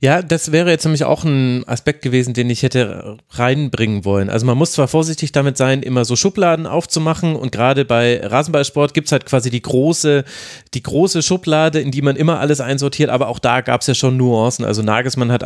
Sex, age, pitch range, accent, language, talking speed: male, 30-49, 125-155 Hz, German, German, 215 wpm